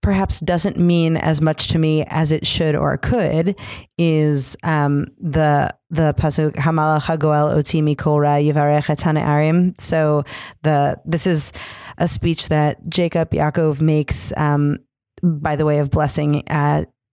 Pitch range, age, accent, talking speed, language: 150-170 Hz, 30-49, American, 135 wpm, English